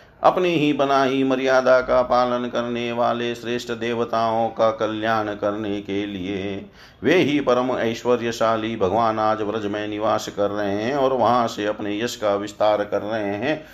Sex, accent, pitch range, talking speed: male, native, 105-125 Hz, 155 wpm